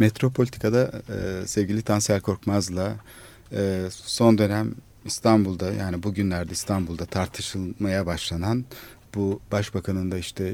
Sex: male